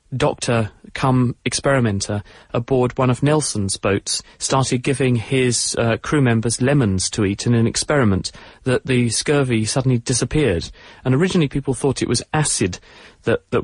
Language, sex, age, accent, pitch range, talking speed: English, male, 30-49, British, 115-135 Hz, 140 wpm